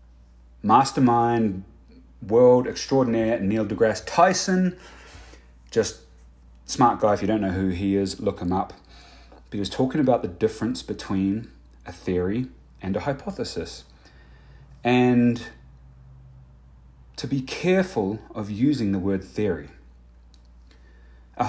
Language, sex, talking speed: English, male, 115 wpm